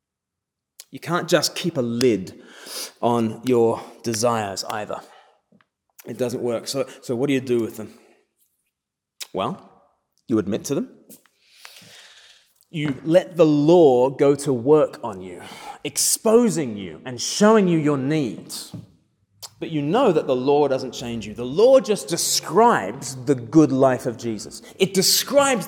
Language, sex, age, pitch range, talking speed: English, male, 20-39, 120-170 Hz, 145 wpm